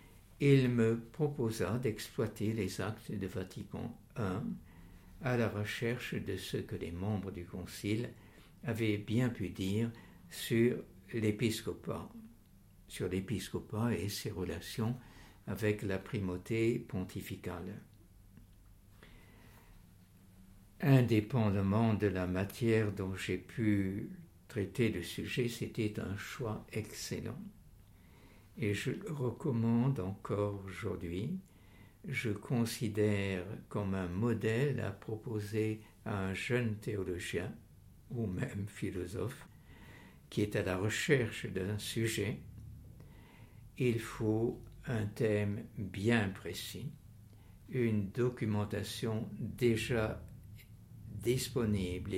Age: 60-79